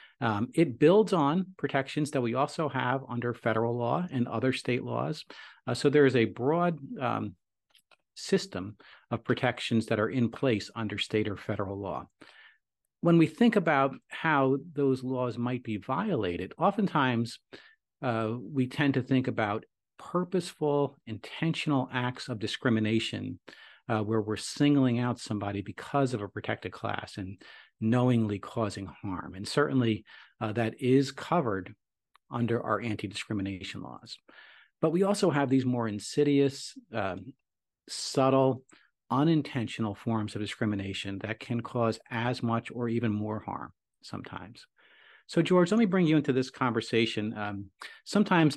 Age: 50-69